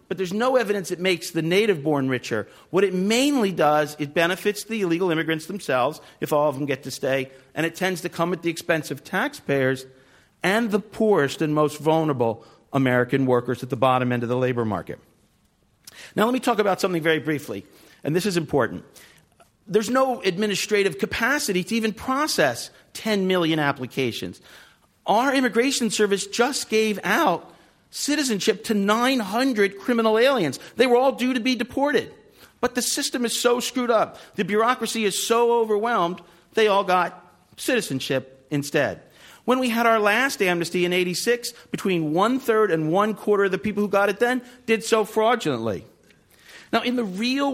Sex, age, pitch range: male, 50-69, 155-225 Hz